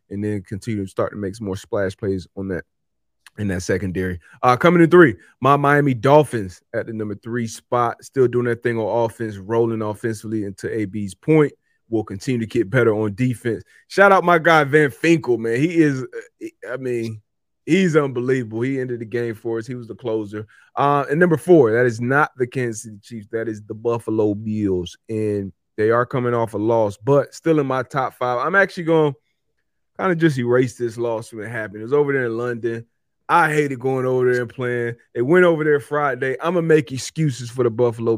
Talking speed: 215 wpm